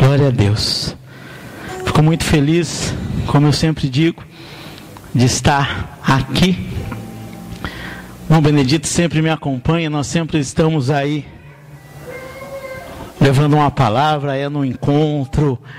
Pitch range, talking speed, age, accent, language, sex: 140-165 Hz, 105 wpm, 50-69, Brazilian, Portuguese, male